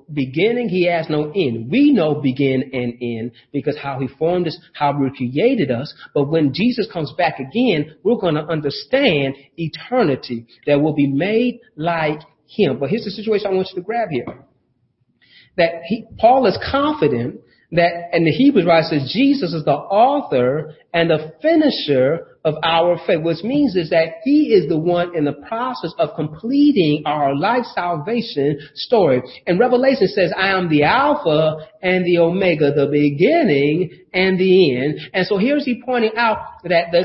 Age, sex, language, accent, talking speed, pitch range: 40-59, male, English, American, 175 wpm, 155-240 Hz